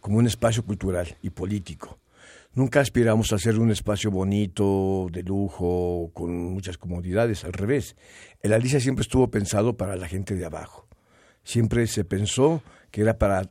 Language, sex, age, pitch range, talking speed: Spanish, male, 60-79, 95-120 Hz, 160 wpm